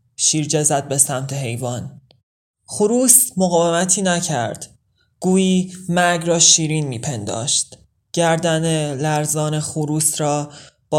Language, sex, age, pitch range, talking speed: Persian, male, 20-39, 135-155 Hz, 100 wpm